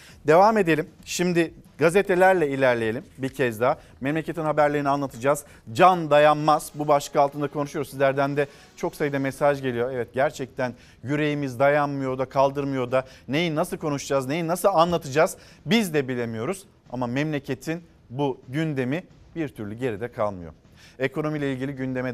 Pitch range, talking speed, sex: 130-160 Hz, 140 wpm, male